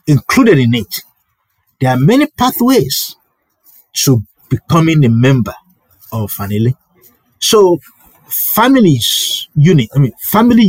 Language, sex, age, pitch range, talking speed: English, male, 50-69, 115-155 Hz, 105 wpm